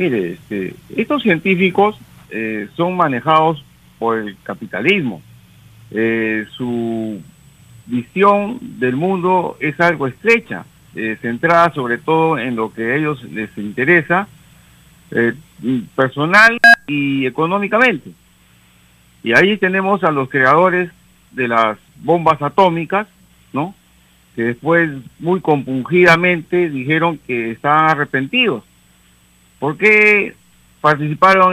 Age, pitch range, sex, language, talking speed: 50-69, 125-180 Hz, male, Spanish, 105 wpm